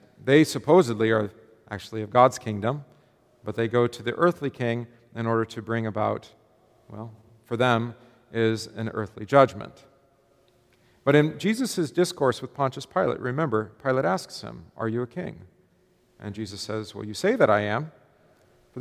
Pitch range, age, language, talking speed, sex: 110-135 Hz, 40-59, English, 165 wpm, male